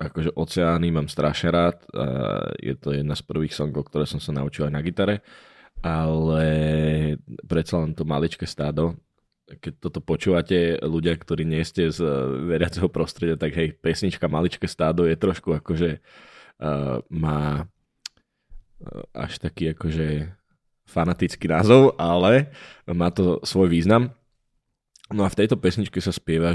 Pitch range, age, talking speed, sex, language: 80-90 Hz, 20-39, 135 wpm, male, Slovak